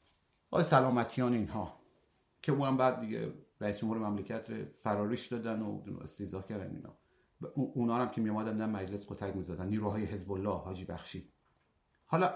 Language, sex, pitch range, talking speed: Persian, male, 115-150 Hz, 160 wpm